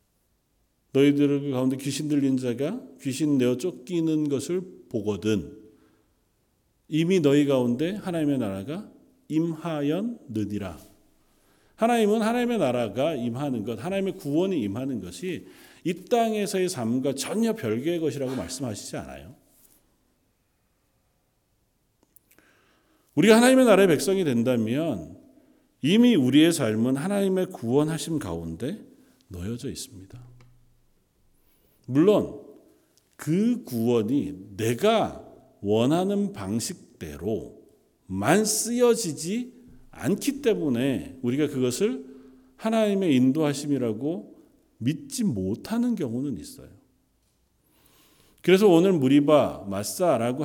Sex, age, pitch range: male, 40-59, 120-190 Hz